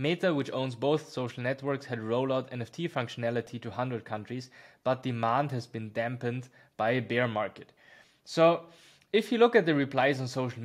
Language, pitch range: English, 130-170 Hz